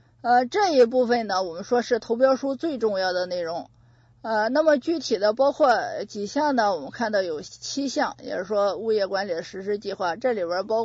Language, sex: Chinese, female